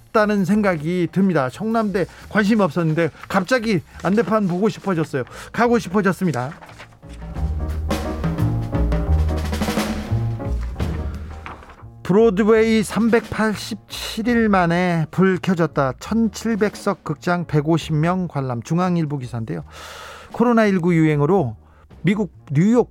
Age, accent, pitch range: 40-59, native, 145-195 Hz